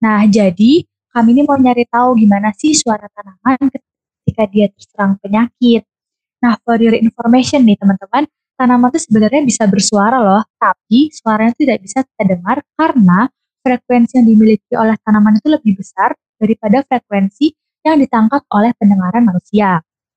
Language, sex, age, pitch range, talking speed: Indonesian, female, 20-39, 205-245 Hz, 145 wpm